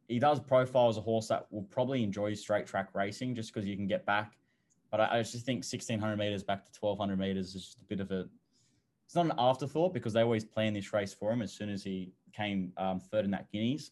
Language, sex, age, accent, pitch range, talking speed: English, male, 10-29, Australian, 95-115 Hz, 250 wpm